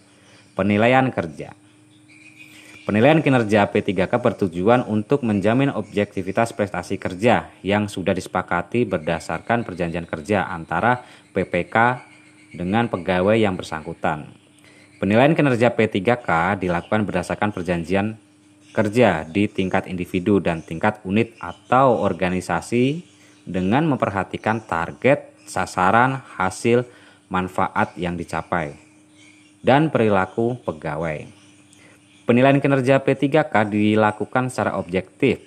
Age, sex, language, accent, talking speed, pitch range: 20-39, male, Indonesian, native, 95 wpm, 95-115 Hz